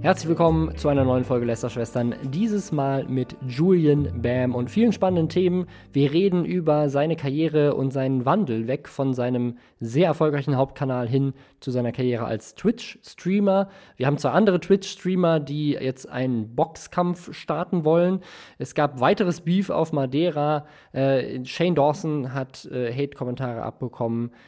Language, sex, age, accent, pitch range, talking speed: German, male, 20-39, German, 125-170 Hz, 145 wpm